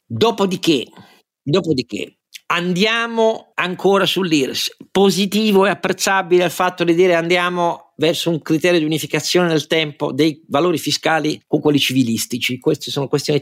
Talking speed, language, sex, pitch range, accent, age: 130 wpm, Italian, male, 135-175 Hz, native, 50-69